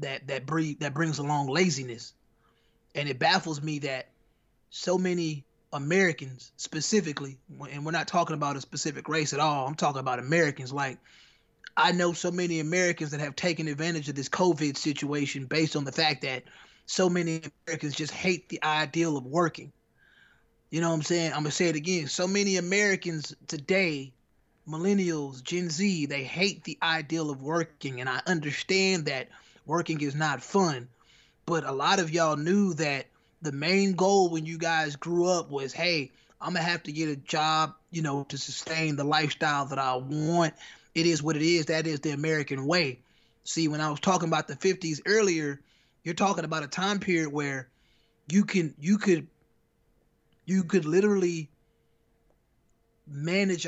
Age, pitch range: 20-39, 145-175 Hz